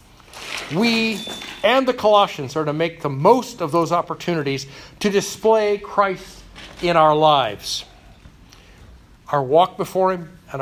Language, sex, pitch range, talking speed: English, male, 150-200 Hz, 130 wpm